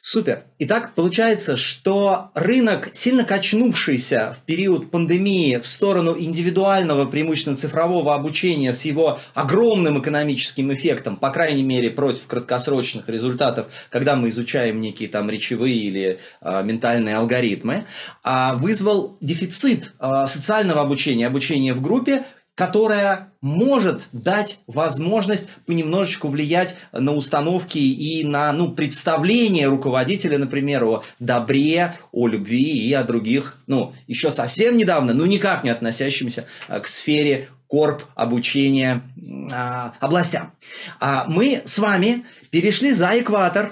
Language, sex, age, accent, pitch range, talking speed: Russian, male, 20-39, native, 140-200 Hz, 120 wpm